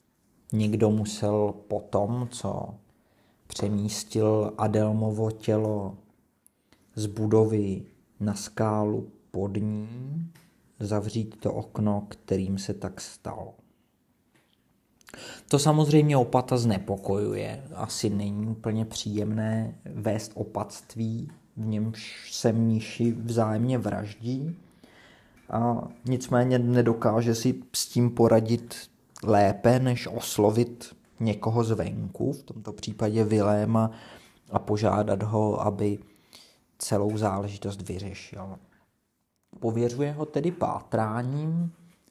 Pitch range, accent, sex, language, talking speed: 105-125 Hz, native, male, Czech, 90 wpm